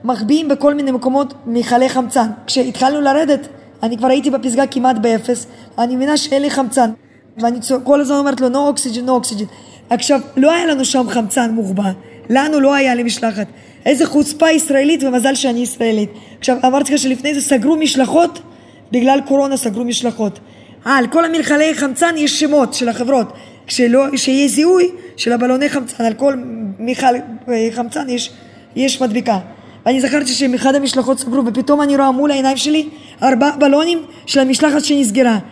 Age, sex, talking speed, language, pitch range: 20-39, female, 160 wpm, Hebrew, 250-295 Hz